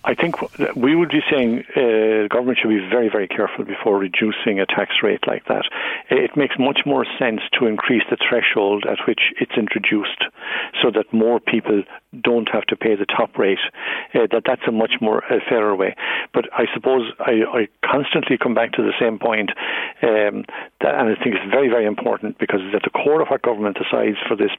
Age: 60-79